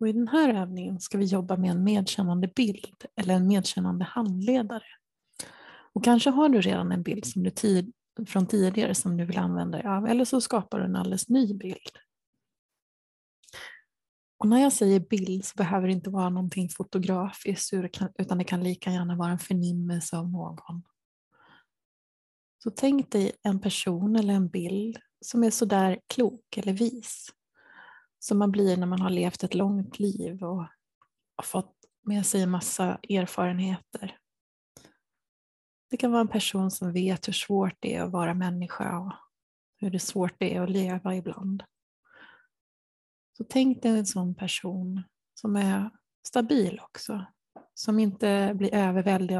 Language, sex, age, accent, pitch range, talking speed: Swedish, female, 30-49, native, 185-220 Hz, 165 wpm